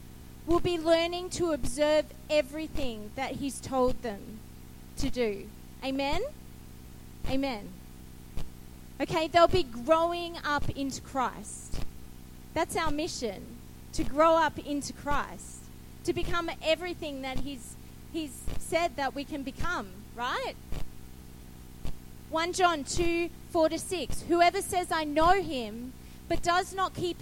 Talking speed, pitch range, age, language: 120 wpm, 245-340 Hz, 30-49, English